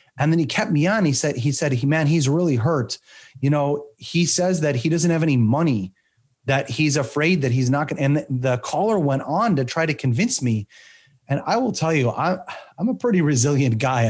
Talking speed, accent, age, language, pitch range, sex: 230 wpm, American, 30-49, English, 120-150 Hz, male